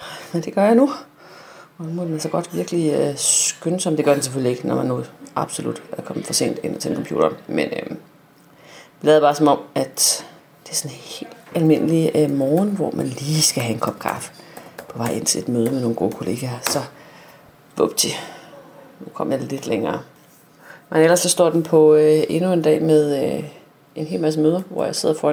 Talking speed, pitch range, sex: 215 wpm, 150-195 Hz, female